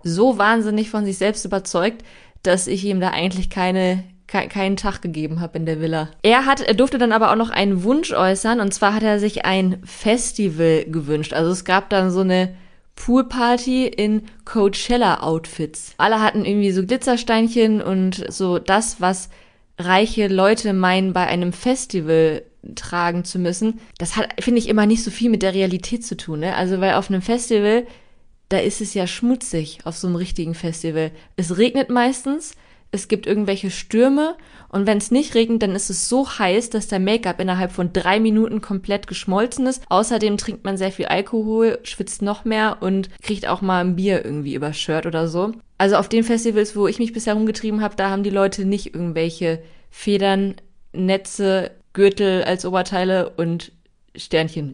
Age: 20-39